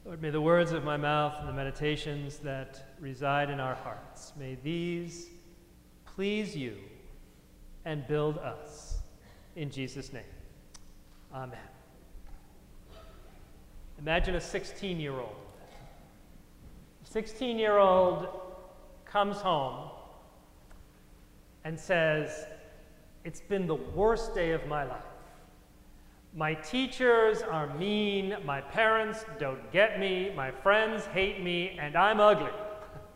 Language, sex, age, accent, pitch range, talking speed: English, male, 40-59, American, 150-205 Hz, 105 wpm